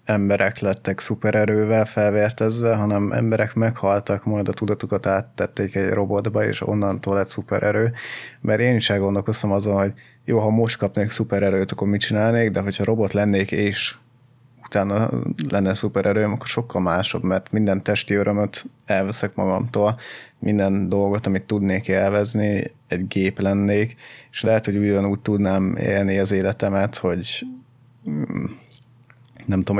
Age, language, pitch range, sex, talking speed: 20-39, Hungarian, 100-115 Hz, male, 135 wpm